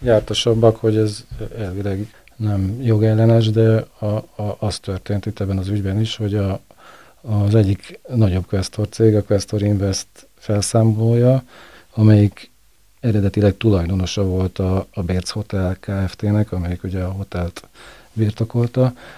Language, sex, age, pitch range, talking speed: Hungarian, male, 40-59, 95-110 Hz, 130 wpm